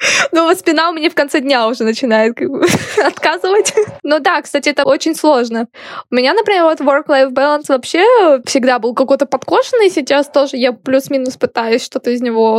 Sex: female